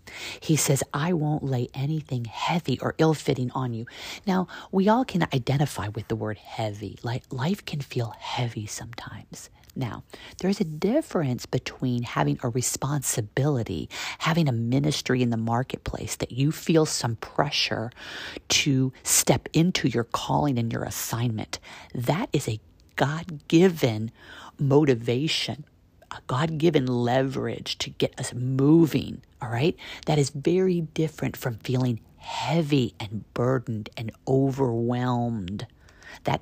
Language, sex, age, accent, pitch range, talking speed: English, female, 40-59, American, 120-155 Hz, 130 wpm